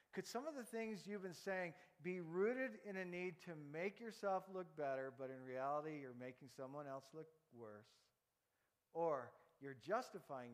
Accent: American